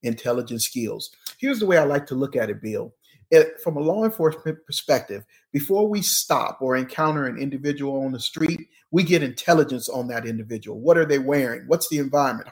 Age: 40-59